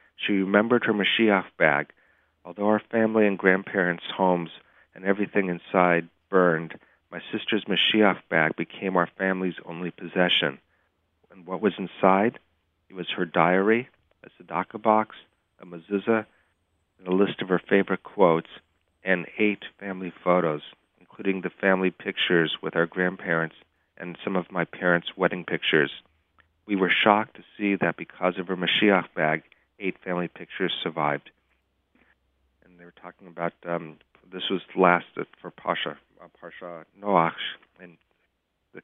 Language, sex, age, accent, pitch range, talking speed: English, male, 40-59, American, 85-100 Hz, 140 wpm